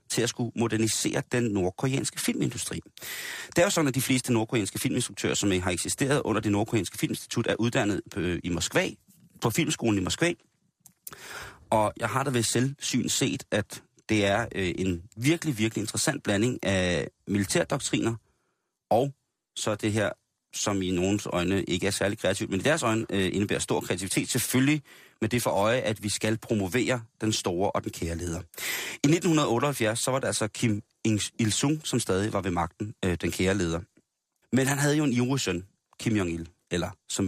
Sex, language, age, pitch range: male, Danish, 30-49, 95-125 Hz